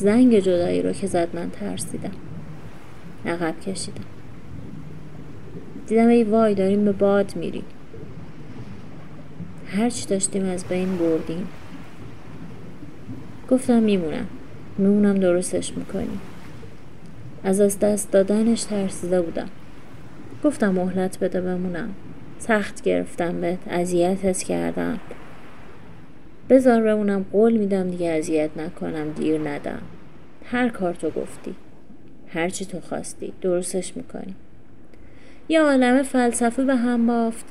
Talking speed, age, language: 100 wpm, 30-49, English